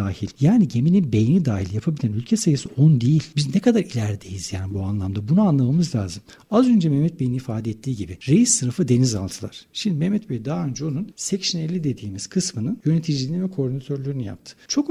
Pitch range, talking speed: 120-185 Hz, 180 wpm